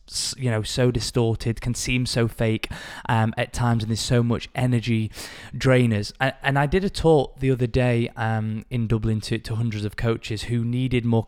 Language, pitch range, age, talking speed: English, 110-130 Hz, 20-39, 195 wpm